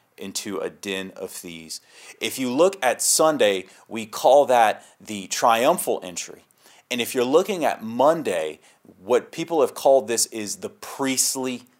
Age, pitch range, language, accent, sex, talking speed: 30-49, 105-140 Hz, English, American, male, 155 wpm